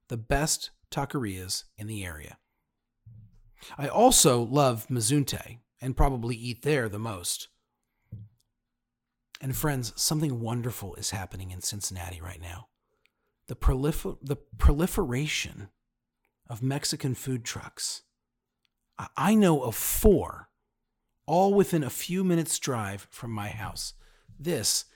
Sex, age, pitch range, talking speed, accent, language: male, 40-59, 105-145 Hz, 120 wpm, American, English